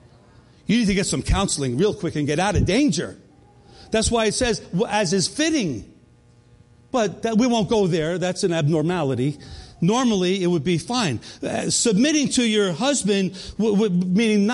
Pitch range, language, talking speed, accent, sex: 175-230 Hz, English, 160 wpm, American, male